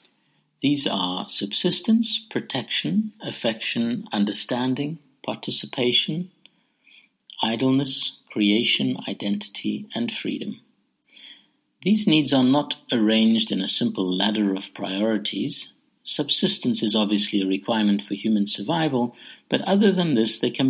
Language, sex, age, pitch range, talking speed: English, male, 60-79, 100-150 Hz, 105 wpm